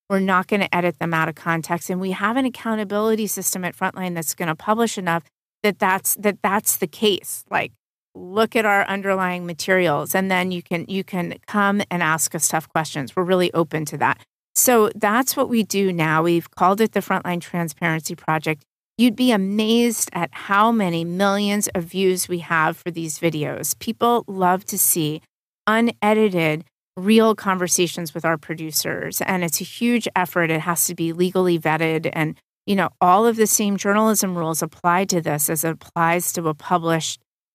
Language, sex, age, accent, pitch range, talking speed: English, female, 30-49, American, 165-205 Hz, 185 wpm